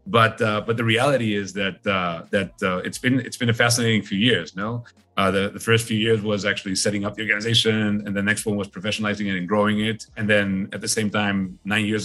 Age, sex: 30-49, male